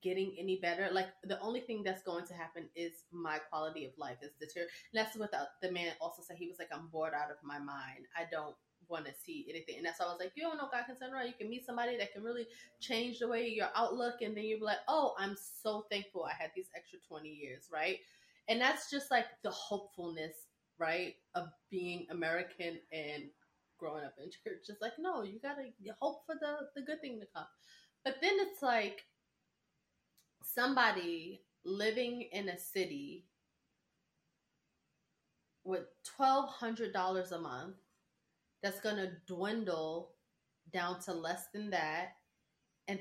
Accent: American